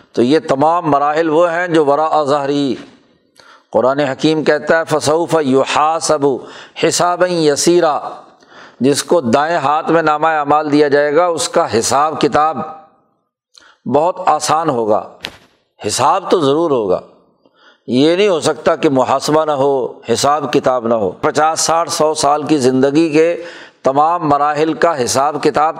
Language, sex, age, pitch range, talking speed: Urdu, male, 60-79, 135-160 Hz, 145 wpm